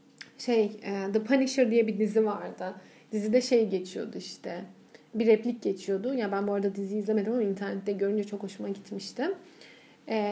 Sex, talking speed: female, 155 wpm